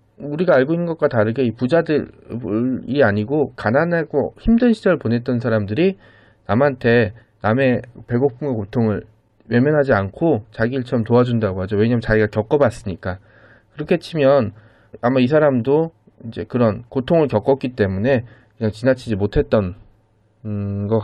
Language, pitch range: Korean, 110-145 Hz